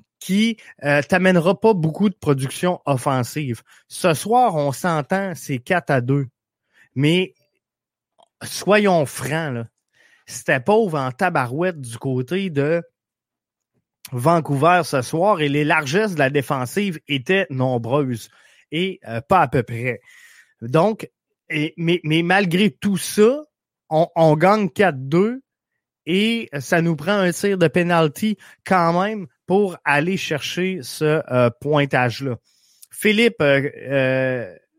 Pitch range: 140-190 Hz